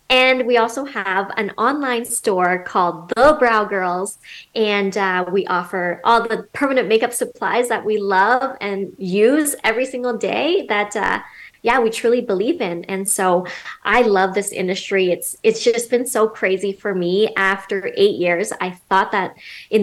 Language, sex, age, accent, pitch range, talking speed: English, female, 20-39, American, 185-235 Hz, 170 wpm